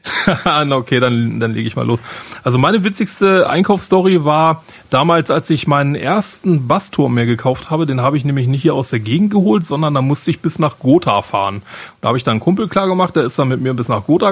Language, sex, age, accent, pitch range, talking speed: German, male, 30-49, German, 130-165 Hz, 230 wpm